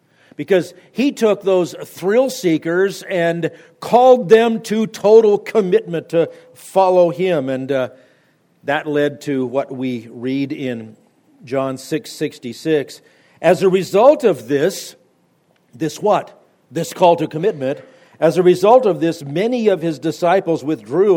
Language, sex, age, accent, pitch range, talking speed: English, male, 50-69, American, 150-195 Hz, 135 wpm